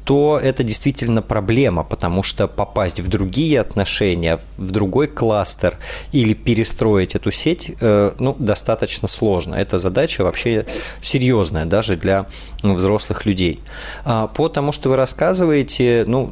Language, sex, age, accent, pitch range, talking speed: Russian, male, 20-39, native, 95-115 Hz, 125 wpm